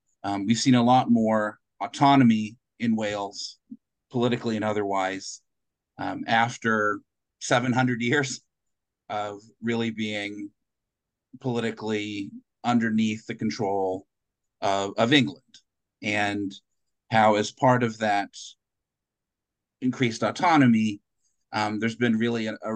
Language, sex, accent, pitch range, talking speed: English, male, American, 105-120 Hz, 105 wpm